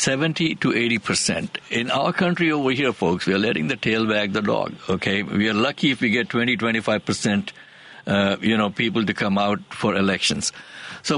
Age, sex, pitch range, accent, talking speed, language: 60-79, male, 105-140 Hz, Indian, 200 wpm, English